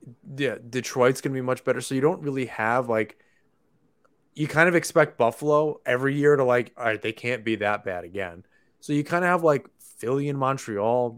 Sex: male